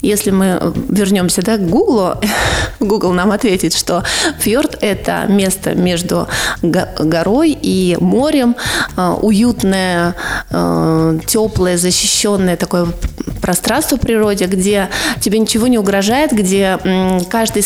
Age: 20-39